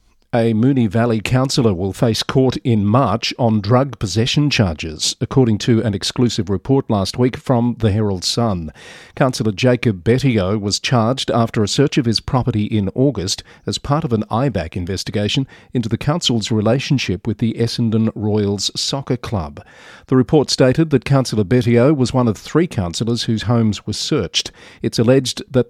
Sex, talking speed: male, 165 wpm